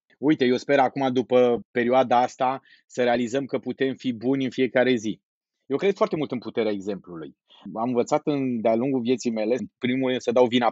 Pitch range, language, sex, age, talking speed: 130-195 Hz, Romanian, male, 30-49, 195 wpm